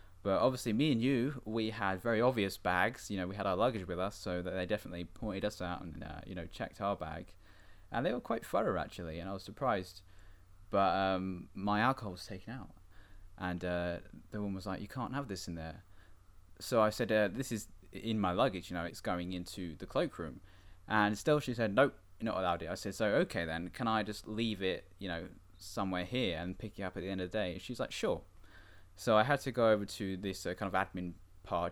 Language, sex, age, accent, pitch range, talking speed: English, male, 10-29, British, 90-105 Hz, 240 wpm